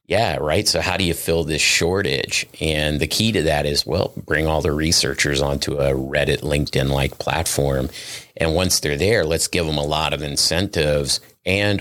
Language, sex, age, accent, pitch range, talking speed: English, male, 50-69, American, 70-90 Hz, 190 wpm